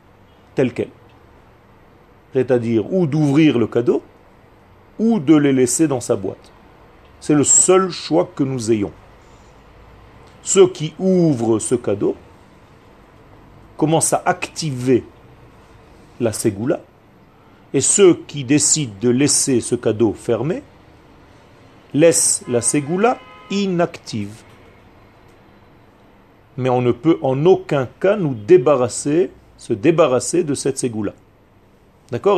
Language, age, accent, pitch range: French, 40-59, French, 100-150 Hz